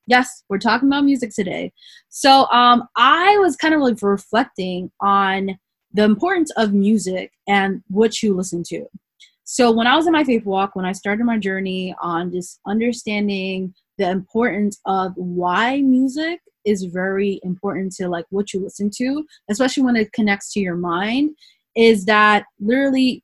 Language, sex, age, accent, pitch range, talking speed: English, female, 20-39, American, 195-260 Hz, 165 wpm